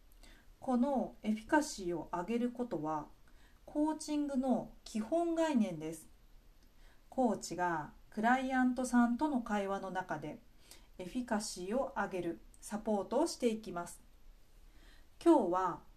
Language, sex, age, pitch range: Japanese, female, 40-59, 175-250 Hz